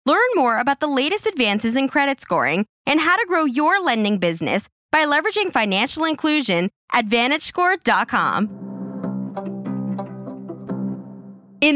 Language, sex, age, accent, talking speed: English, female, 20-39, American, 115 wpm